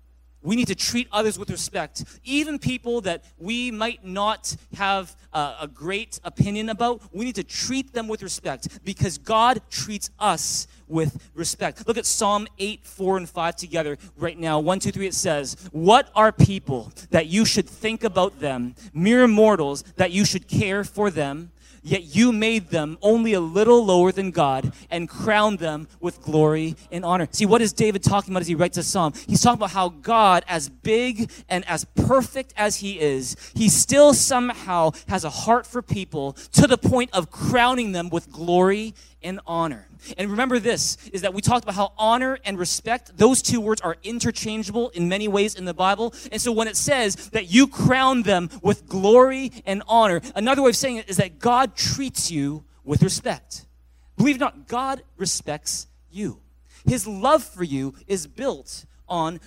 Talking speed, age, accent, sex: 190 wpm, 30-49, American, male